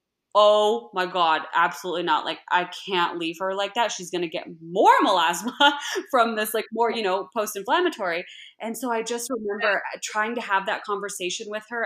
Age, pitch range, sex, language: 20-39, 180-215 Hz, female, English